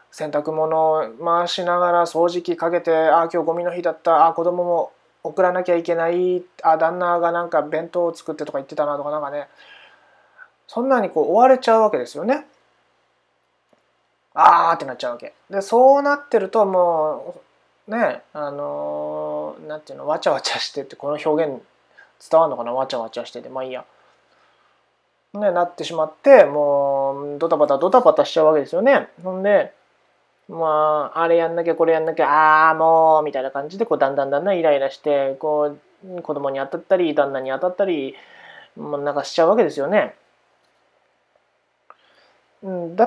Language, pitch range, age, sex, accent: Japanese, 150-225 Hz, 20-39, male, native